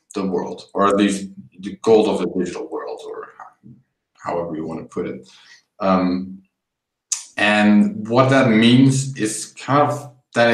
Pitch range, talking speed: 100-130 Hz, 155 wpm